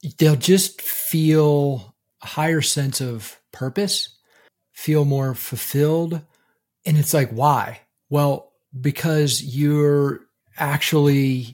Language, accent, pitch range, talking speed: English, American, 125-145 Hz, 100 wpm